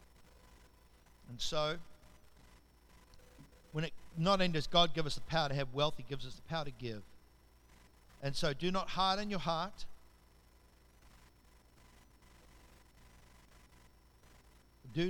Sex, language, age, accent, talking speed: male, English, 60-79, Australian, 120 wpm